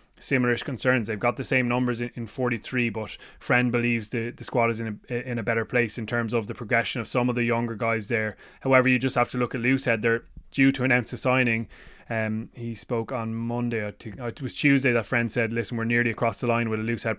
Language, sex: English, male